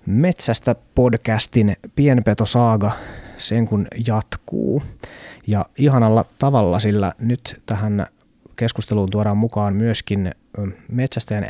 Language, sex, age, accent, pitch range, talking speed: Finnish, male, 20-39, native, 100-115 Hz, 85 wpm